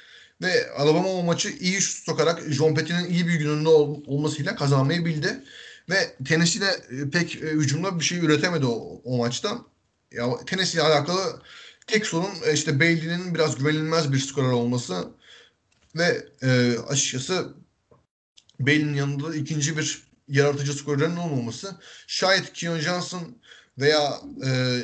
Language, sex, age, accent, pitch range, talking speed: Turkish, male, 30-49, native, 135-160 Hz, 135 wpm